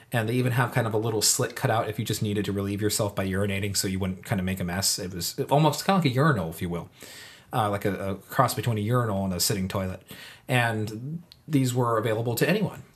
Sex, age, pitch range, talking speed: male, 30-49, 100-130 Hz, 265 wpm